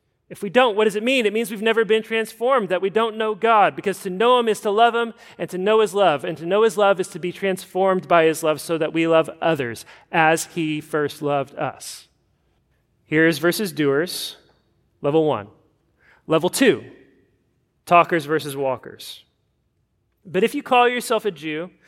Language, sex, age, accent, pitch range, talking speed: English, male, 30-49, American, 160-225 Hz, 190 wpm